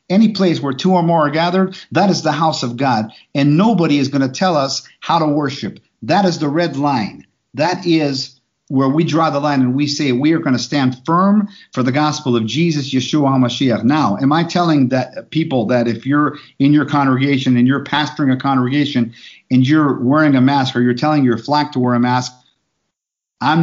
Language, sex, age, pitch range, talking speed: English, male, 50-69, 125-160 Hz, 215 wpm